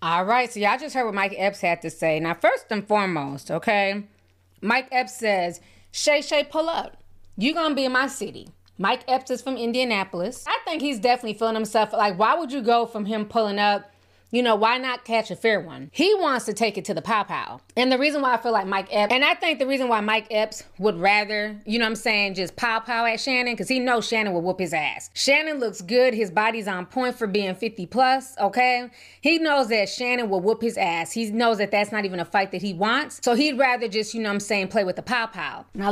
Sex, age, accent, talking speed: female, 20-39, American, 250 wpm